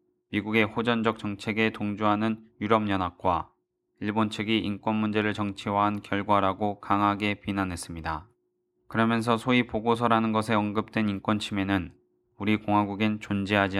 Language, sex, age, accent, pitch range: Korean, male, 20-39, native, 100-115 Hz